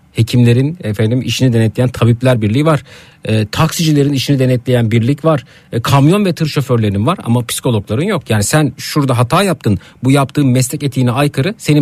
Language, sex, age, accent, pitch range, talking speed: Turkish, male, 50-69, native, 115-155 Hz, 170 wpm